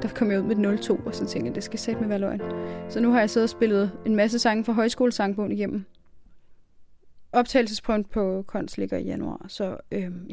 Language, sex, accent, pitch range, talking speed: Danish, female, native, 190-230 Hz, 210 wpm